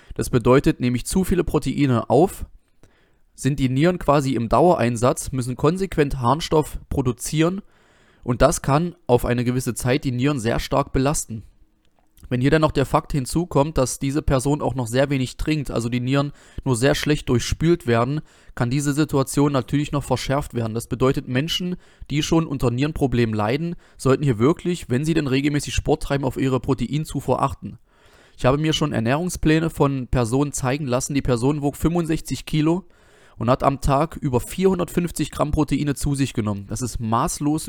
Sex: male